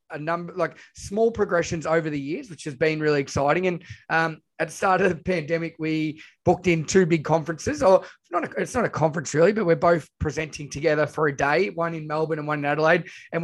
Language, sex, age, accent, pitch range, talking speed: English, male, 20-39, Australian, 150-180 Hz, 230 wpm